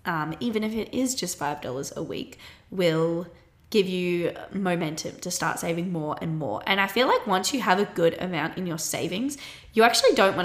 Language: English